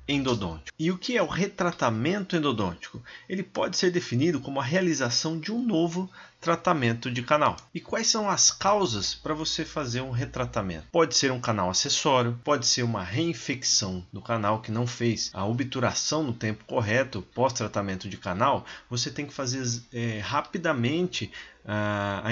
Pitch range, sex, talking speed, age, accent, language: 120-165 Hz, male, 160 wpm, 30-49, Brazilian, Portuguese